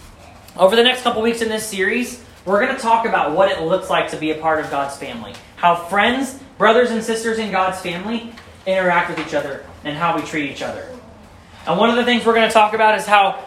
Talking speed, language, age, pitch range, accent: 240 wpm, English, 20-39, 160-205 Hz, American